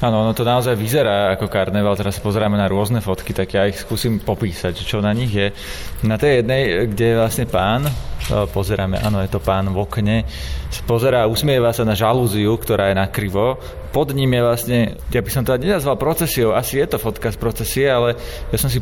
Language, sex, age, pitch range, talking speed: Slovak, male, 20-39, 100-115 Hz, 200 wpm